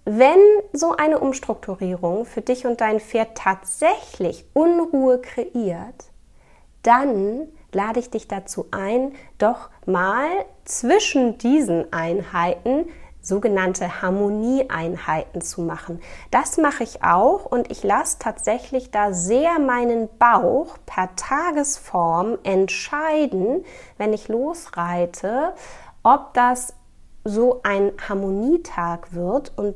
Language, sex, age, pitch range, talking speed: German, female, 20-39, 205-285 Hz, 105 wpm